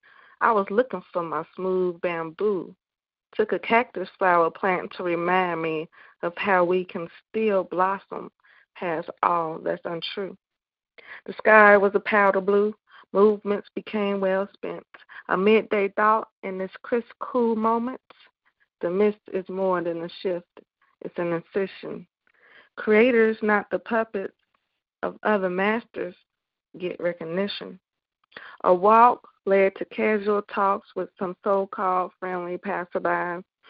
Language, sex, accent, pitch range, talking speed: English, female, American, 180-215 Hz, 130 wpm